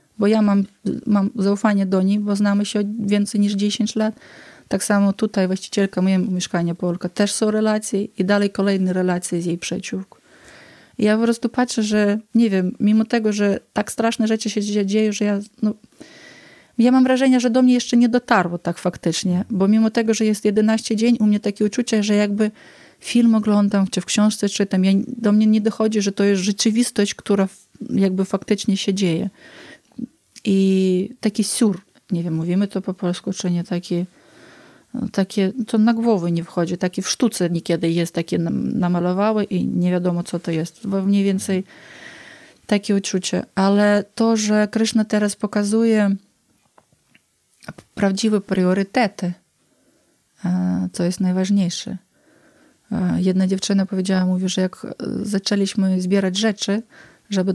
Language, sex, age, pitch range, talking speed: Polish, female, 30-49, 190-220 Hz, 160 wpm